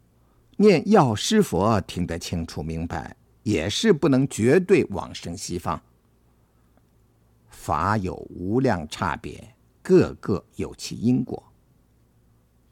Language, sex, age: Chinese, male, 50-69